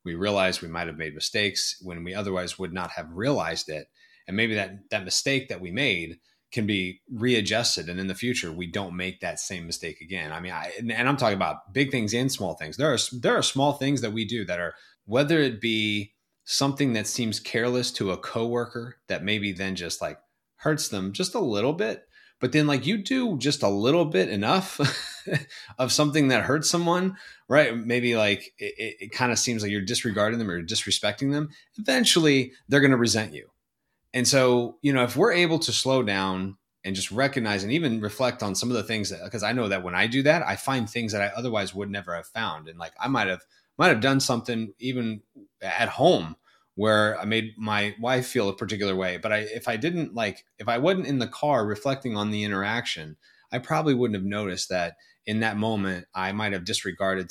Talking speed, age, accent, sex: 215 wpm, 20-39, American, male